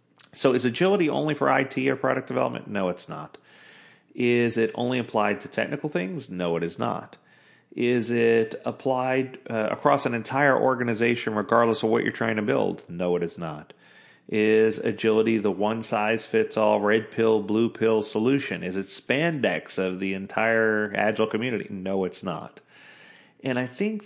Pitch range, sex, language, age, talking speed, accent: 100-130 Hz, male, English, 40-59, 160 wpm, American